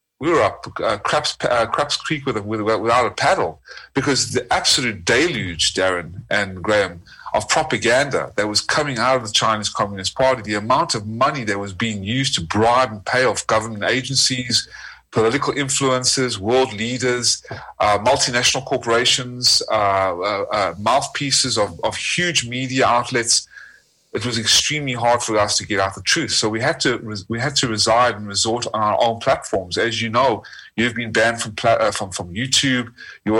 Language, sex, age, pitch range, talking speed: English, male, 30-49, 105-130 Hz, 180 wpm